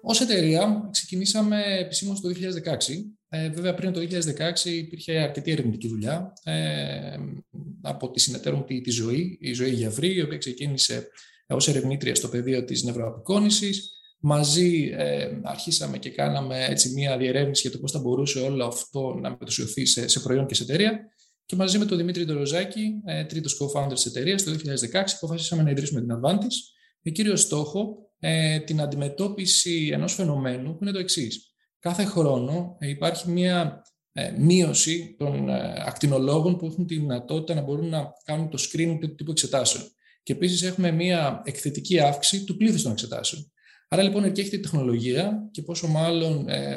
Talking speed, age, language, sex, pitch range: 165 wpm, 20-39, Greek, male, 130-180 Hz